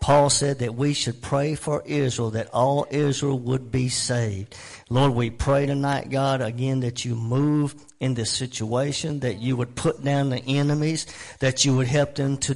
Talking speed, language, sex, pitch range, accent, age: 185 wpm, English, male, 125-150 Hz, American, 50-69